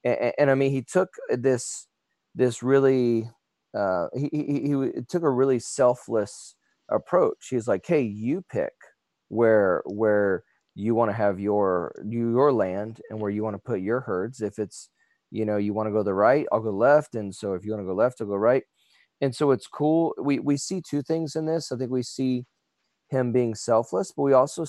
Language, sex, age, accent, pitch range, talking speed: English, male, 30-49, American, 105-135 Hz, 210 wpm